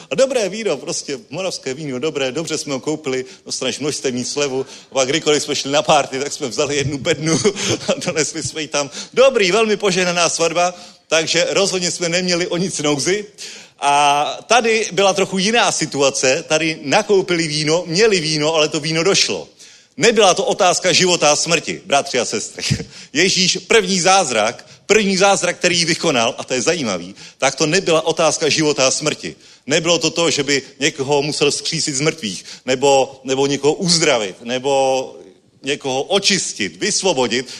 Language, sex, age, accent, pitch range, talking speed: Czech, male, 30-49, native, 145-190 Hz, 160 wpm